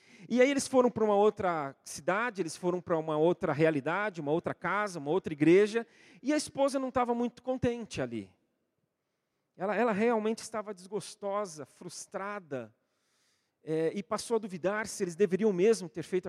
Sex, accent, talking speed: male, Brazilian, 160 wpm